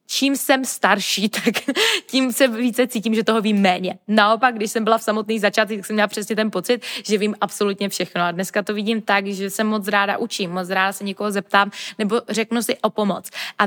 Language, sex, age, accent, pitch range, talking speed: Czech, female, 20-39, native, 190-230 Hz, 220 wpm